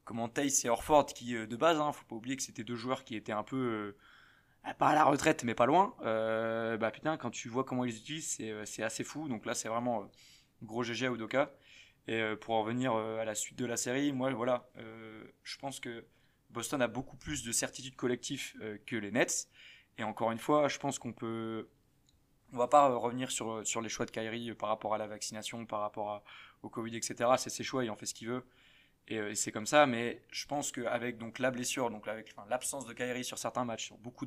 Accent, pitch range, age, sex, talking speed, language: French, 115-135 Hz, 20-39, male, 245 wpm, French